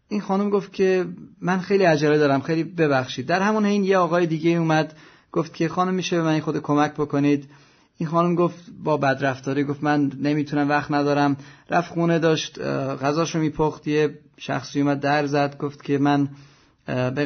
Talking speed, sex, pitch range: 175 wpm, male, 145-175 Hz